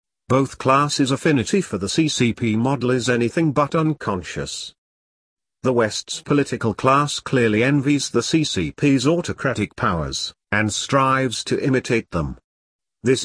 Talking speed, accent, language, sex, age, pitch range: 120 wpm, British, English, male, 50-69, 105-140 Hz